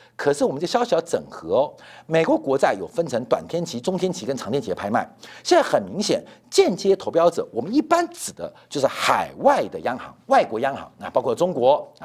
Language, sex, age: Chinese, male, 50-69